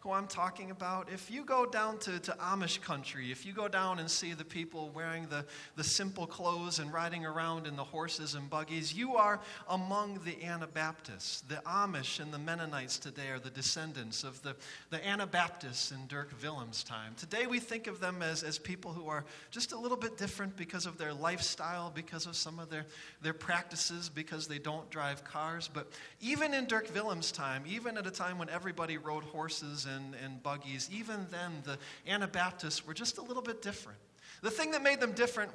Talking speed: 200 wpm